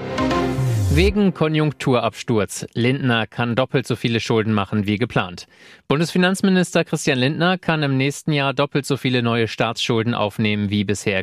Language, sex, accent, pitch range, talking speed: German, male, German, 110-140 Hz, 140 wpm